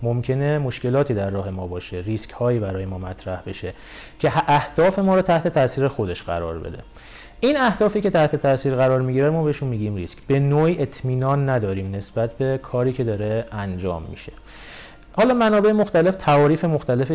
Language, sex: Persian, male